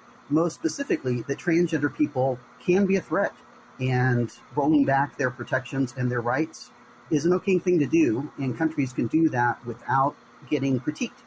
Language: English